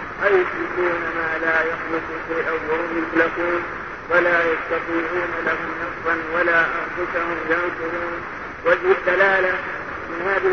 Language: Arabic